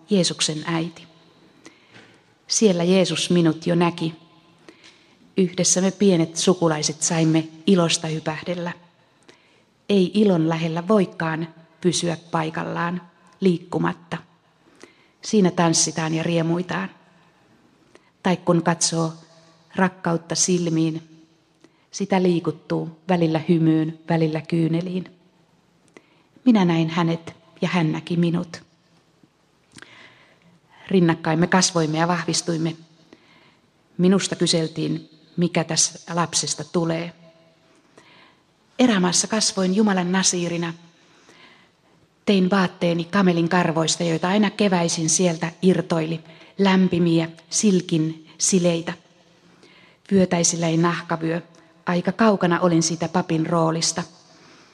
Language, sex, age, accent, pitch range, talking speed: Finnish, female, 30-49, native, 165-180 Hz, 85 wpm